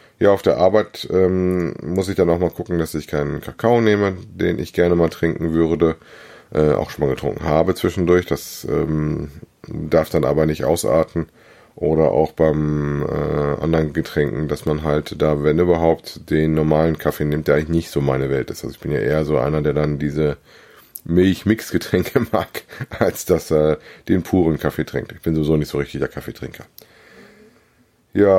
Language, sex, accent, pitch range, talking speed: German, male, German, 75-105 Hz, 185 wpm